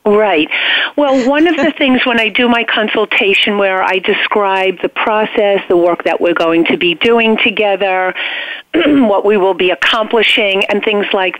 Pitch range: 195-235 Hz